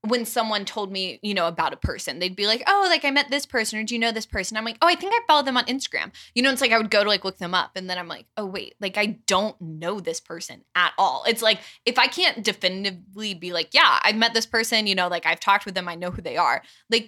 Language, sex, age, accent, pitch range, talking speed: English, female, 20-39, American, 175-225 Hz, 300 wpm